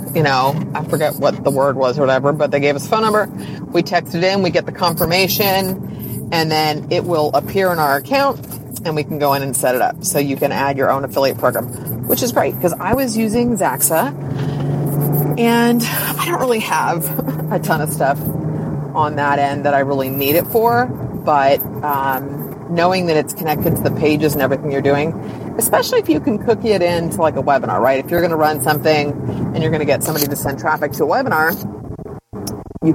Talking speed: 215 wpm